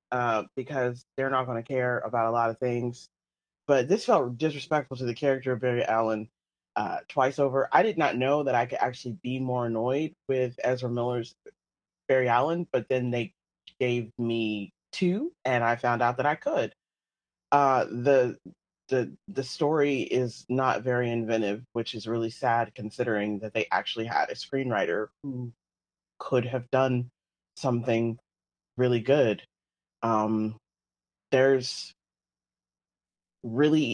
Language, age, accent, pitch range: English, 30-49, American, 115-140 Hz